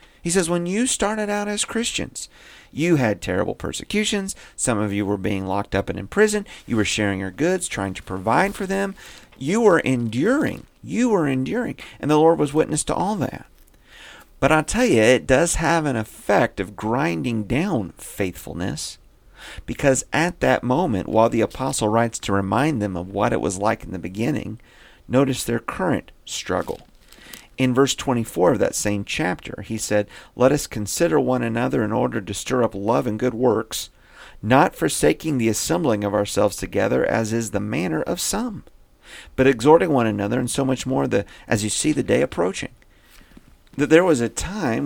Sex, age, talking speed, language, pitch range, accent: male, 40-59, 185 wpm, English, 105-155 Hz, American